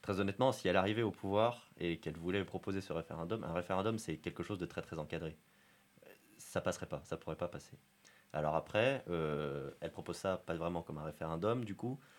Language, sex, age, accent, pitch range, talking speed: French, male, 30-49, French, 80-100 Hz, 205 wpm